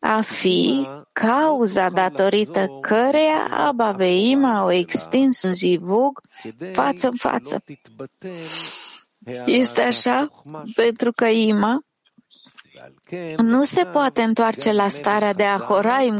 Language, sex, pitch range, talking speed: English, female, 190-245 Hz, 95 wpm